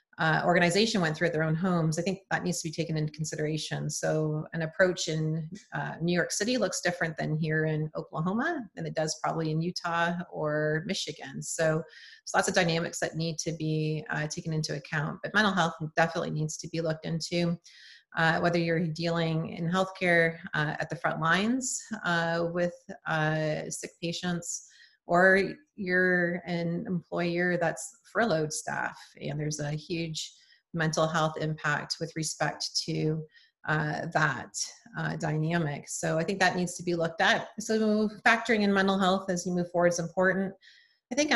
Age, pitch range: 30-49, 160-190 Hz